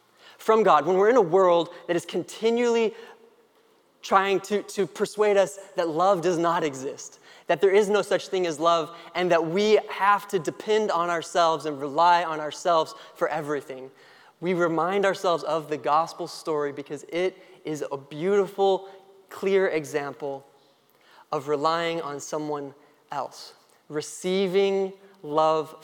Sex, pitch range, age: male, 155-195 Hz, 20-39